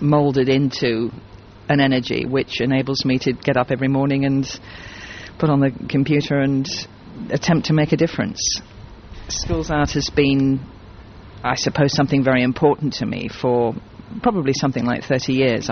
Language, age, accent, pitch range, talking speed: English, 40-59, British, 115-140 Hz, 155 wpm